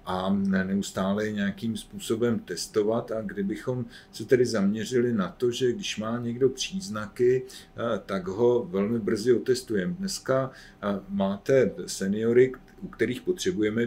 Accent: native